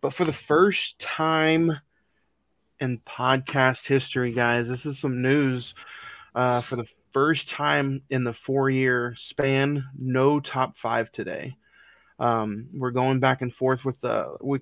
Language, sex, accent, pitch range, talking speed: English, male, American, 125-140 Hz, 145 wpm